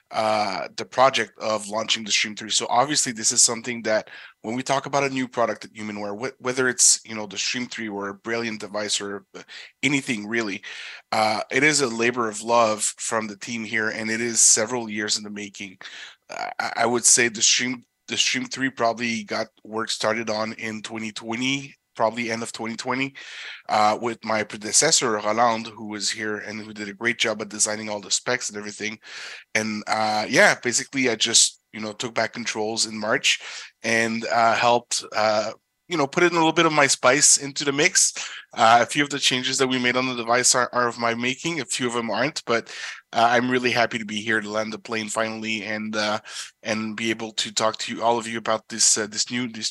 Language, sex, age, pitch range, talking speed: English, male, 20-39, 110-125 Hz, 215 wpm